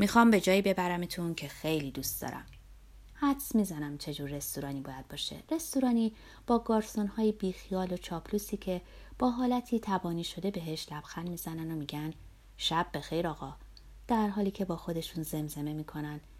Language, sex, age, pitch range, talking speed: Persian, female, 30-49, 155-240 Hz, 145 wpm